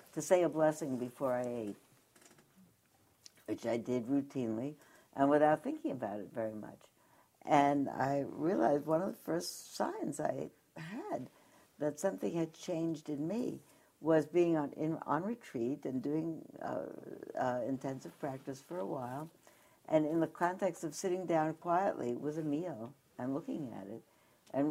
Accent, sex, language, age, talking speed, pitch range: American, female, English, 60-79, 160 wpm, 135-170 Hz